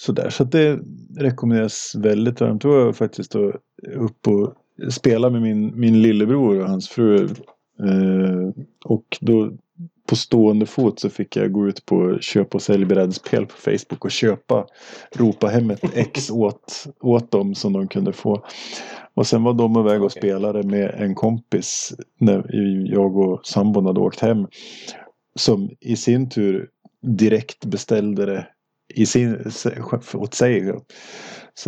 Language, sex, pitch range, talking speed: Swedish, male, 100-120 Hz, 155 wpm